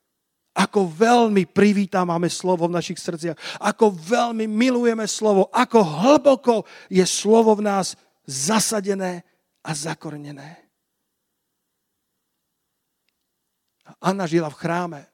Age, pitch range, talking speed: 40-59, 145-180 Hz, 95 wpm